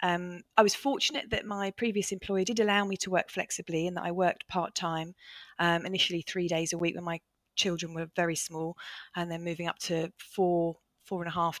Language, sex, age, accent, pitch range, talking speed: English, female, 30-49, British, 170-205 Hz, 215 wpm